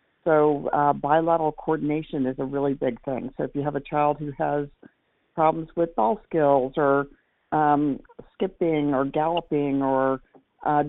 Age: 50-69